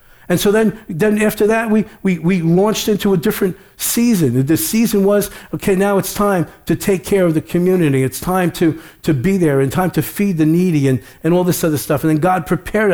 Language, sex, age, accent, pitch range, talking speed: English, male, 50-69, American, 160-205 Hz, 225 wpm